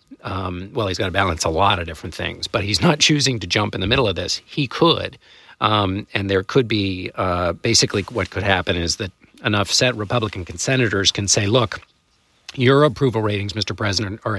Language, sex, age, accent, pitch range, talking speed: English, male, 50-69, American, 95-120 Hz, 205 wpm